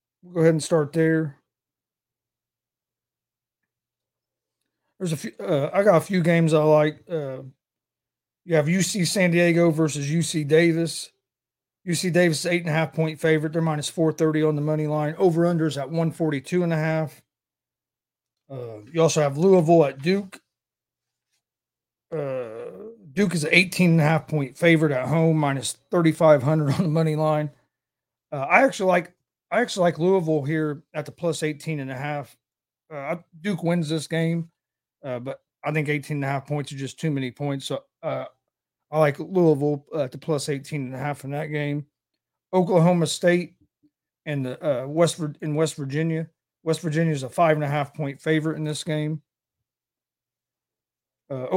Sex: male